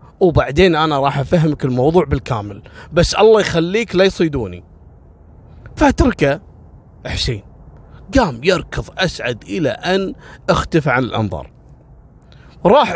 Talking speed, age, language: 100 wpm, 30-49, Arabic